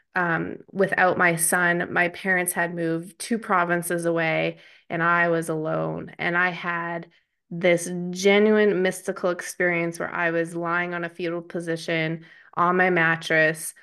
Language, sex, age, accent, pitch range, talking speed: English, female, 20-39, American, 170-200 Hz, 145 wpm